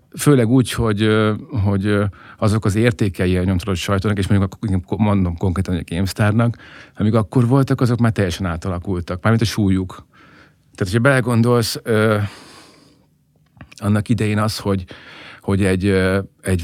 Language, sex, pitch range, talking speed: Hungarian, male, 95-110 Hz, 135 wpm